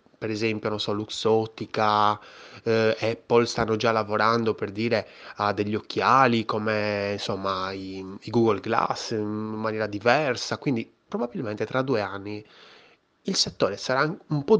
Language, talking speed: Italian, 140 wpm